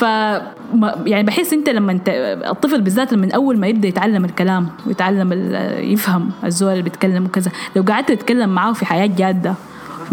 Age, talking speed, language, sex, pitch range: 10-29, 180 wpm, Arabic, female, 190-235 Hz